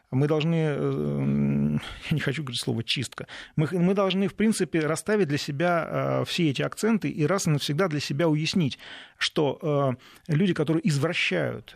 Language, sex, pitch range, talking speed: Russian, male, 135-180 Hz, 155 wpm